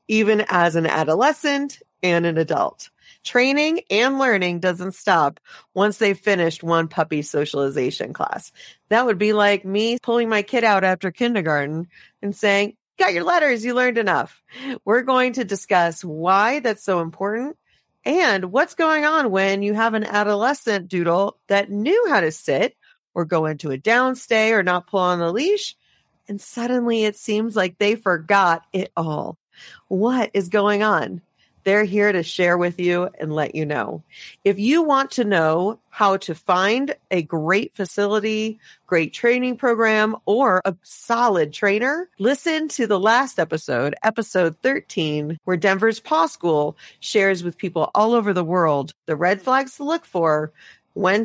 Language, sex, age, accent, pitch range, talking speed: English, female, 40-59, American, 170-235 Hz, 160 wpm